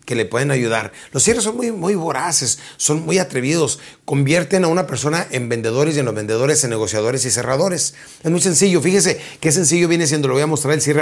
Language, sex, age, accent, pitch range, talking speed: Spanish, male, 30-49, Mexican, 125-155 Hz, 225 wpm